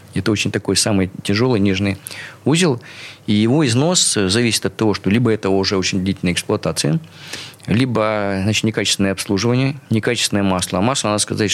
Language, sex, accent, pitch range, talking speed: Russian, male, native, 100-130 Hz, 150 wpm